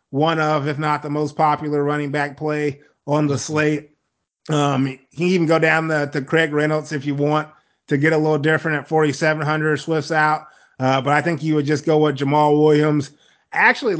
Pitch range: 150-170 Hz